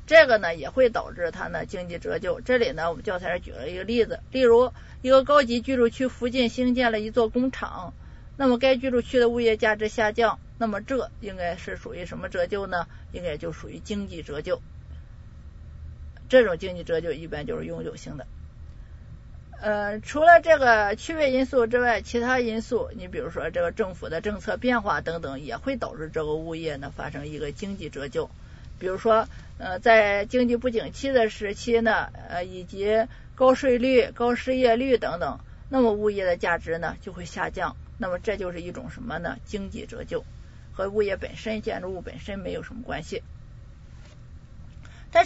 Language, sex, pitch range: Chinese, female, 195-255 Hz